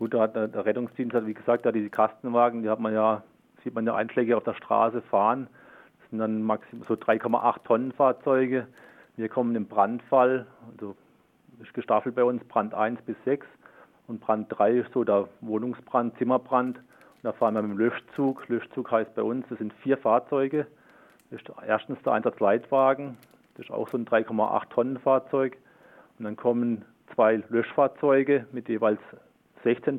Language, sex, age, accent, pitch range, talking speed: German, male, 40-59, German, 110-125 Hz, 170 wpm